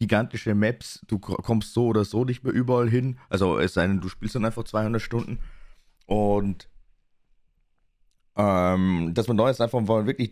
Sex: male